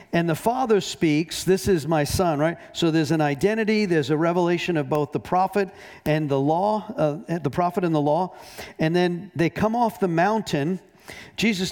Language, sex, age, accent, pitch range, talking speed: English, male, 50-69, American, 150-200 Hz, 190 wpm